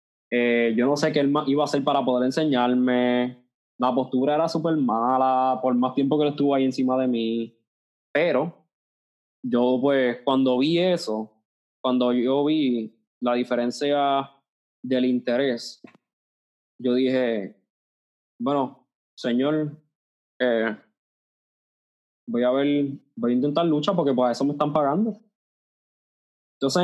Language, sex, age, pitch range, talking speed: Spanish, male, 20-39, 120-145 Hz, 135 wpm